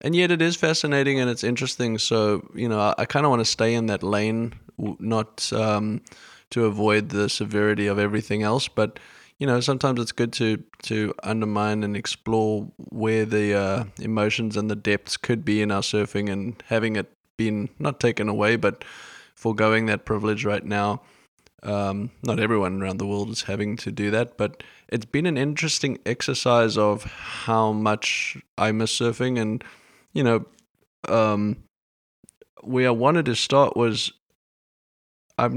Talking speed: 165 wpm